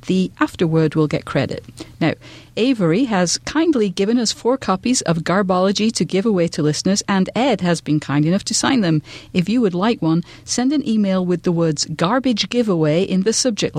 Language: English